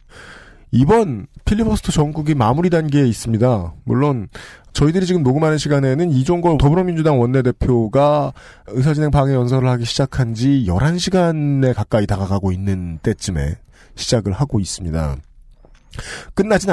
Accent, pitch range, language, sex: native, 105-155 Hz, Korean, male